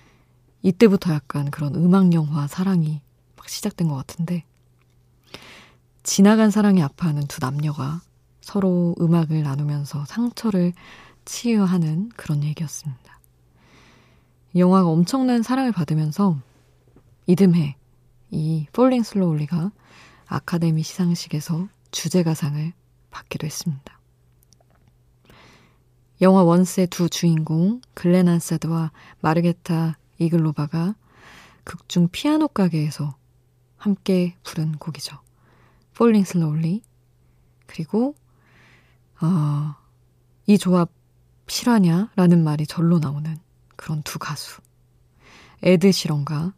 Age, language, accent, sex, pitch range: 20-39, Korean, native, female, 140-180 Hz